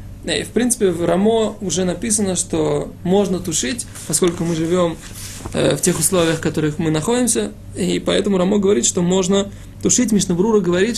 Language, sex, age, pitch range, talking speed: Russian, male, 20-39, 145-185 Hz, 165 wpm